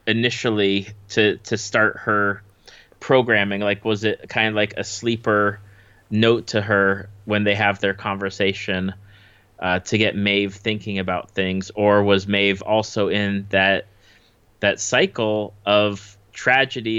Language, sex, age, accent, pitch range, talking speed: English, male, 30-49, American, 100-115 Hz, 140 wpm